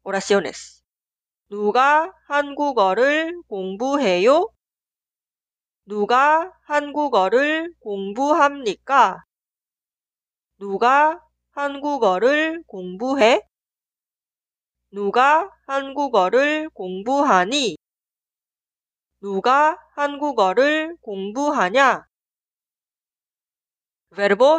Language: Korean